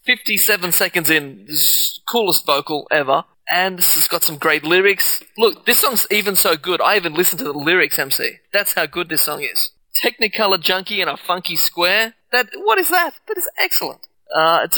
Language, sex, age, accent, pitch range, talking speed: English, male, 20-39, Australian, 160-195 Hz, 205 wpm